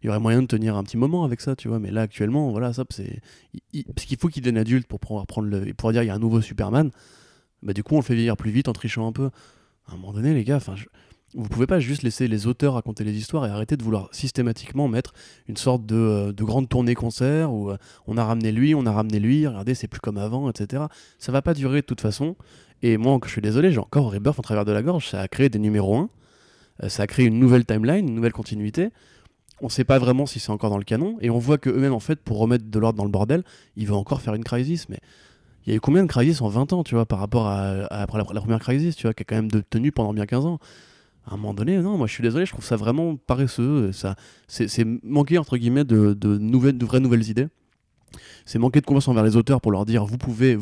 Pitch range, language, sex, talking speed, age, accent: 105-135 Hz, French, male, 280 wpm, 20-39, French